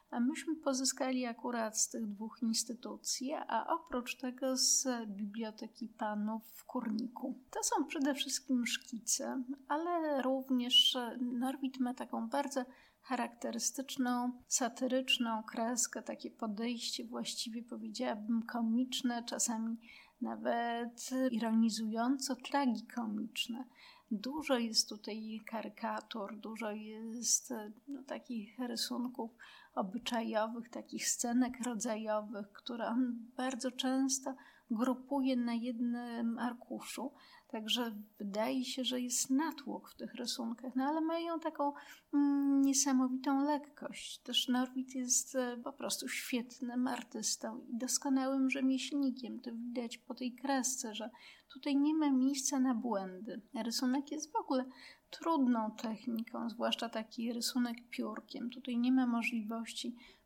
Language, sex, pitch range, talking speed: Polish, female, 230-265 Hz, 110 wpm